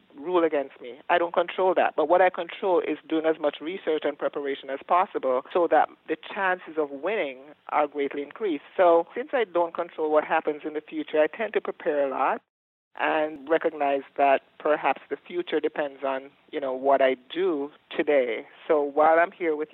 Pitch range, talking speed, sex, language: 135-170 Hz, 195 wpm, male, English